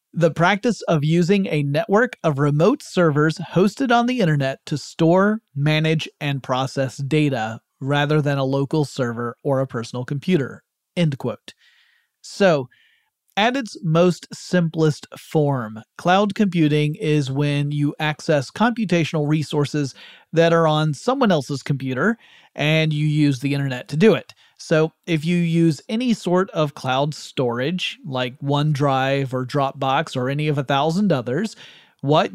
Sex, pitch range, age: male, 140-170 Hz, 30-49